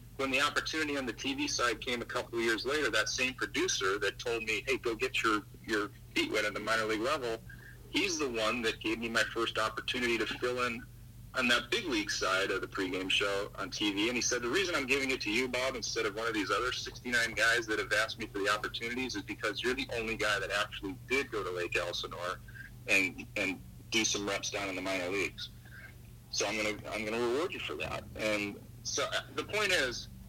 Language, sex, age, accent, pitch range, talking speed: English, male, 40-59, American, 110-125 Hz, 240 wpm